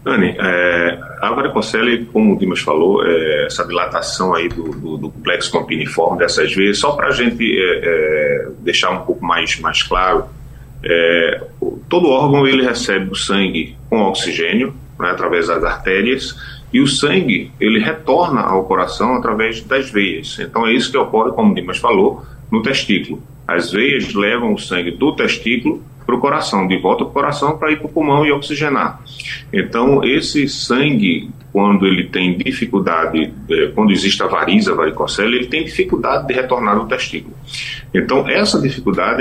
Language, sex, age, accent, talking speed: Portuguese, male, 30-49, Brazilian, 165 wpm